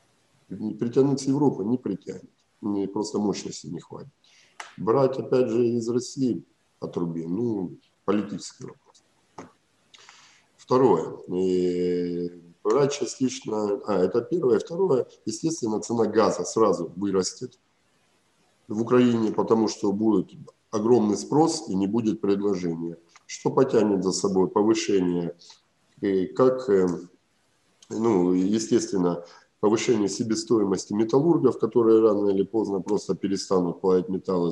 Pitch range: 90-115 Hz